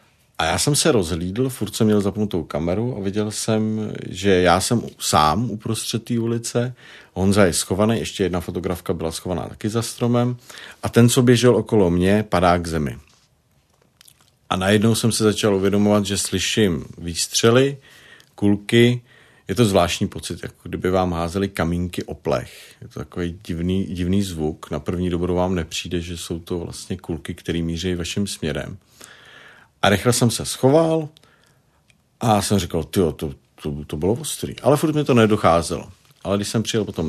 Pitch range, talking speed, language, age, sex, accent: 85-115 Hz, 170 wpm, Czech, 50-69, male, native